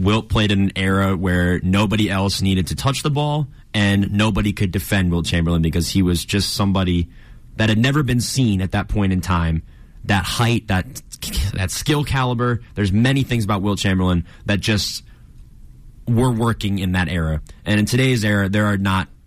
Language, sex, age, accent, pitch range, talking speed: English, male, 20-39, American, 90-120 Hz, 185 wpm